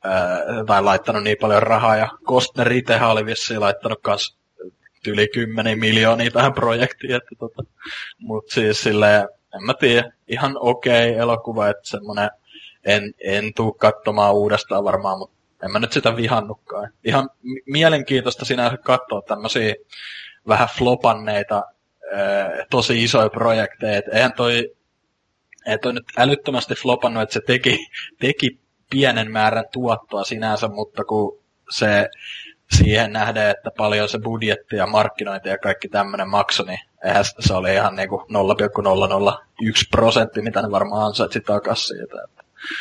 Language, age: Finnish, 20-39